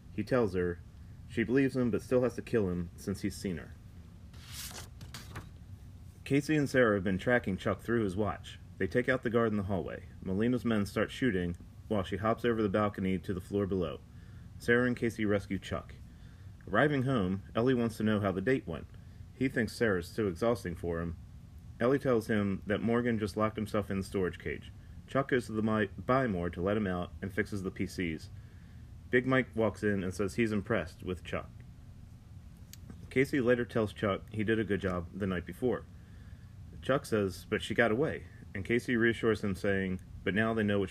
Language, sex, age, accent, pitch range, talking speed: English, male, 40-59, American, 95-115 Hz, 195 wpm